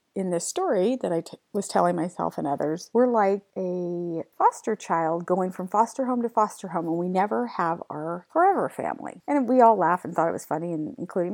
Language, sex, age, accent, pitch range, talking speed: English, female, 40-59, American, 170-235 Hz, 205 wpm